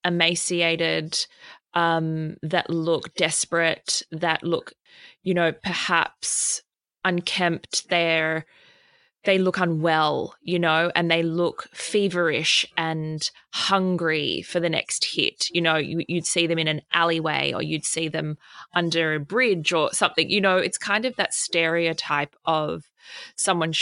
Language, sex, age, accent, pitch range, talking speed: English, female, 20-39, Australian, 160-195 Hz, 130 wpm